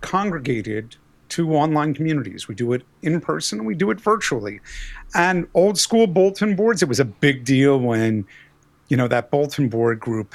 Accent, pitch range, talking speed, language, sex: American, 130-205 Hz, 180 wpm, English, male